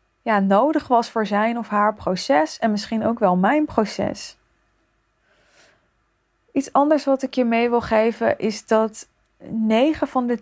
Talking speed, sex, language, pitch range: 155 wpm, female, Dutch, 195-240 Hz